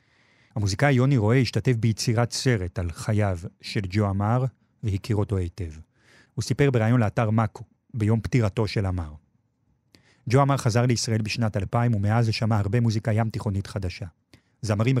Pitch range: 100-125 Hz